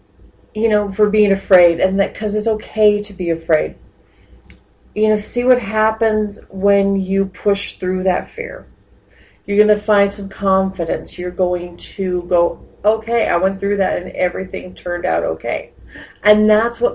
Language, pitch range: English, 170-200 Hz